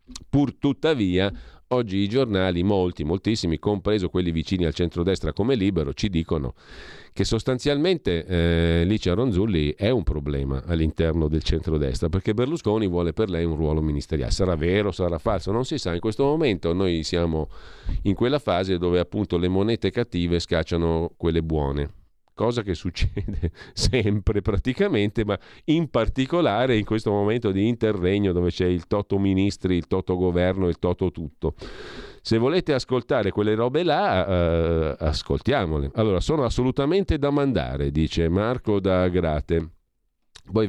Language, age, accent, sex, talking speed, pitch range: Italian, 40-59, native, male, 145 wpm, 85-105 Hz